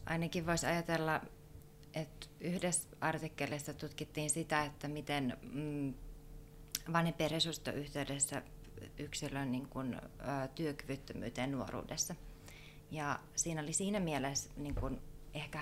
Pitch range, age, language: 130-150 Hz, 30-49, Finnish